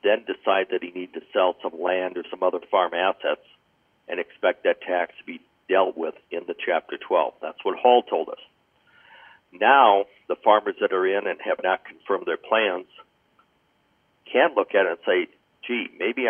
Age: 60-79